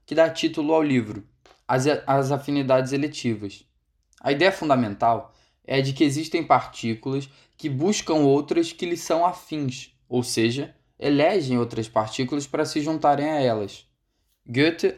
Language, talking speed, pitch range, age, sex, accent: Portuguese, 135 wpm, 125-160 Hz, 10-29, male, Brazilian